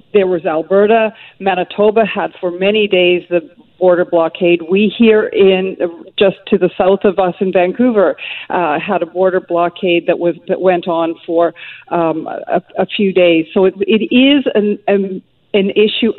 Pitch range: 185-250 Hz